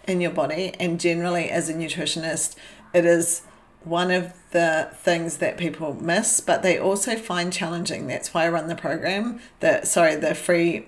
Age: 40-59